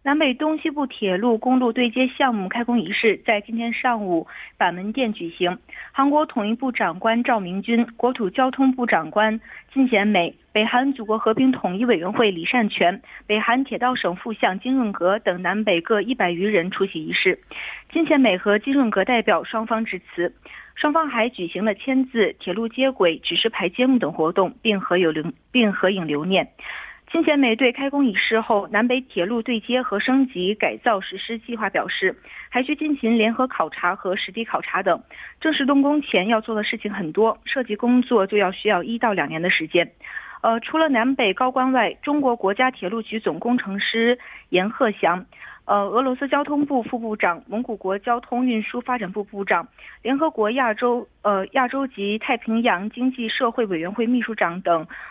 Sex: female